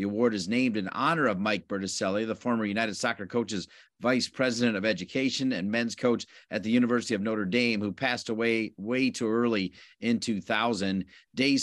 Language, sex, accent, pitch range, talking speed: English, male, American, 115-140 Hz, 185 wpm